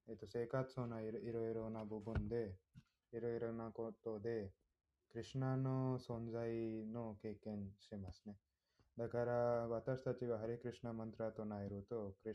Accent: Indian